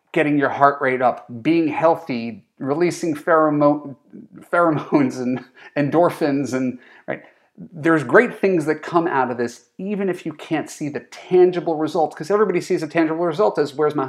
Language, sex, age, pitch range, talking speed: English, male, 40-59, 120-165 Hz, 165 wpm